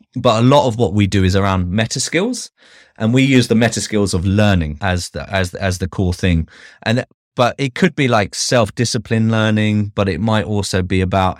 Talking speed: 210 wpm